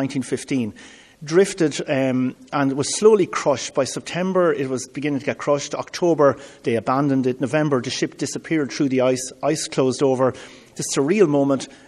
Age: 30-49